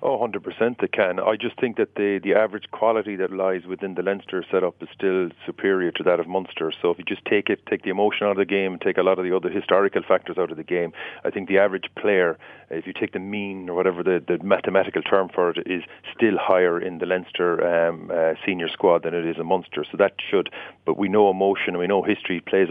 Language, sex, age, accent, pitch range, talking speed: English, male, 40-59, Irish, 95-110 Hz, 250 wpm